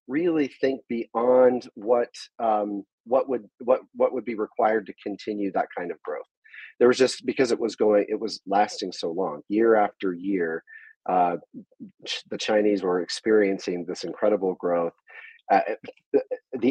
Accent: American